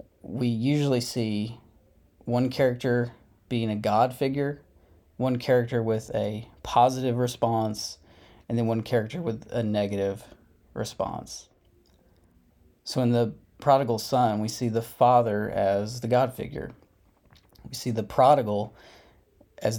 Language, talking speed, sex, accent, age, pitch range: English, 125 wpm, male, American, 30-49, 105-125 Hz